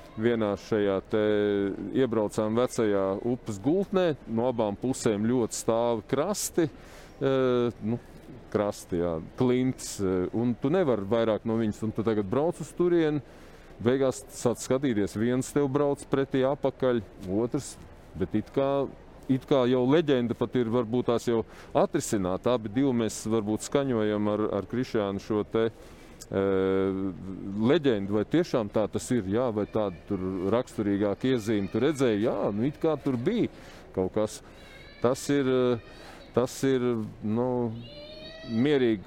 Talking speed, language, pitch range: 135 wpm, English, 105-130 Hz